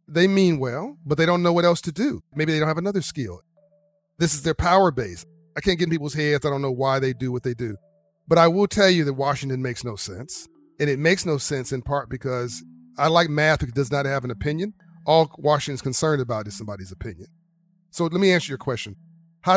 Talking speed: 240 wpm